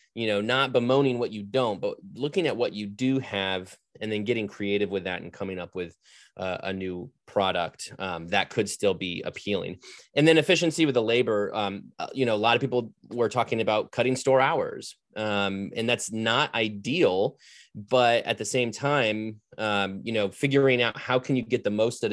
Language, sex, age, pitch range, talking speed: English, male, 30-49, 95-120 Hz, 205 wpm